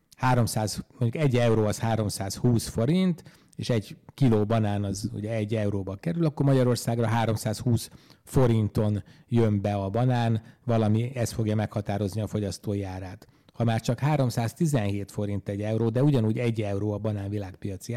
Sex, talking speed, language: male, 150 wpm, Hungarian